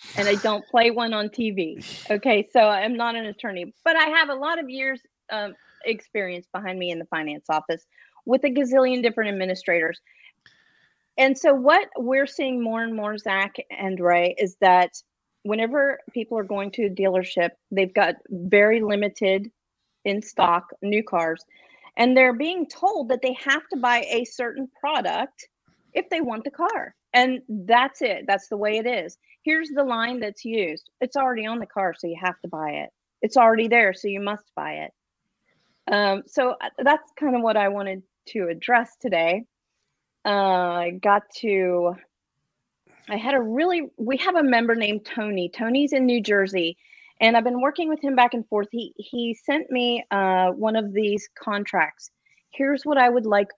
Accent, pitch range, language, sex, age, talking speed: American, 195-260 Hz, English, female, 40-59, 180 wpm